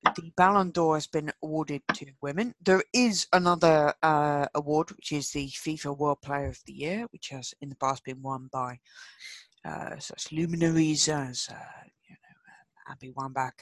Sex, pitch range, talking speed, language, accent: female, 140-185 Hz, 175 wpm, English, British